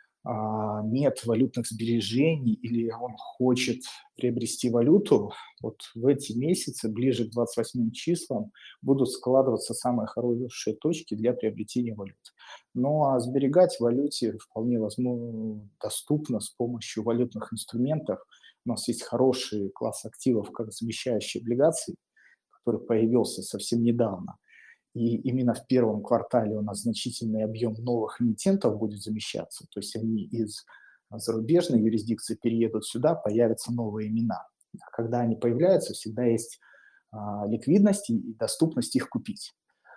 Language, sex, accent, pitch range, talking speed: Russian, male, native, 110-125 Hz, 125 wpm